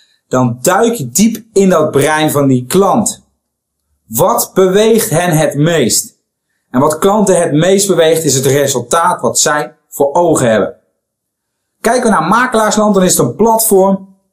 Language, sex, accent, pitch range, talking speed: Dutch, male, Dutch, 145-205 Hz, 160 wpm